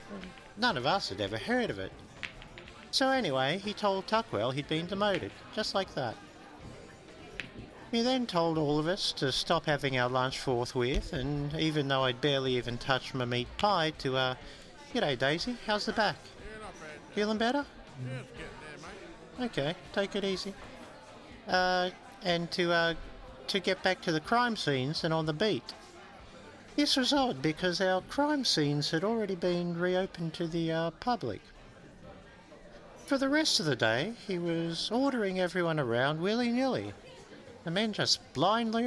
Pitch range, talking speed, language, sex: 145-215 Hz, 155 wpm, English, male